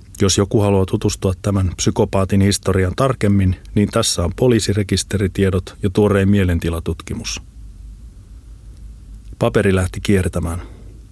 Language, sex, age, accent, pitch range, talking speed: Finnish, male, 30-49, native, 95-105 Hz, 95 wpm